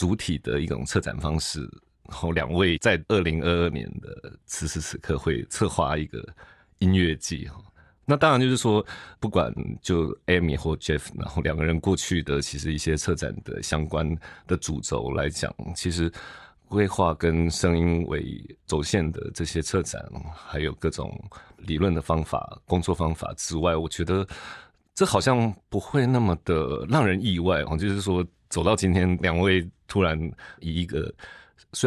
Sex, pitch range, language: male, 80-100 Hz, Chinese